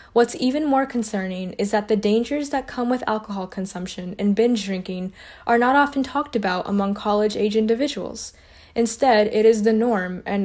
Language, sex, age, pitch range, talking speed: English, female, 10-29, 195-235 Hz, 170 wpm